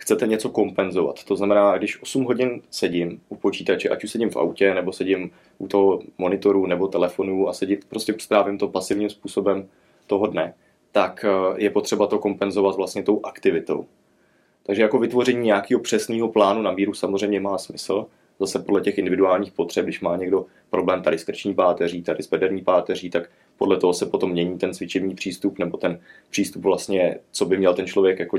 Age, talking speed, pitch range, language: 20-39, 185 wpm, 95-105 Hz, Czech